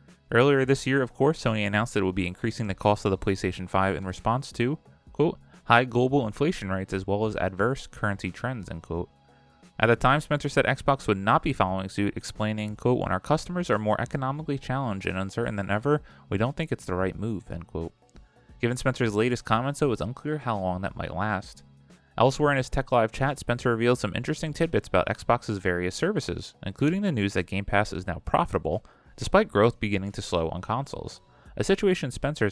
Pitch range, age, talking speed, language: 95-135 Hz, 30-49, 210 wpm, English